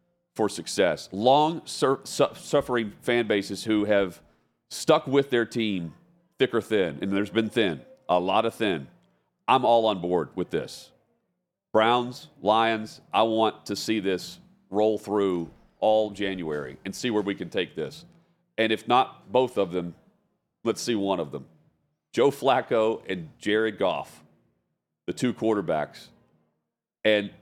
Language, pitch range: English, 100-130 Hz